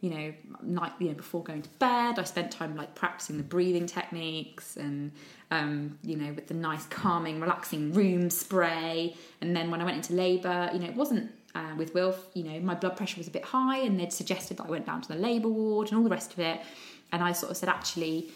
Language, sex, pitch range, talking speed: English, female, 165-200 Hz, 235 wpm